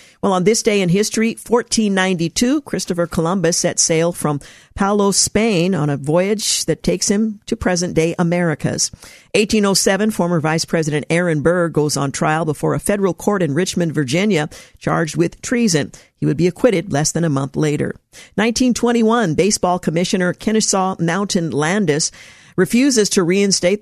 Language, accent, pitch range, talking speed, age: English, American, 160-200 Hz, 150 wpm, 50-69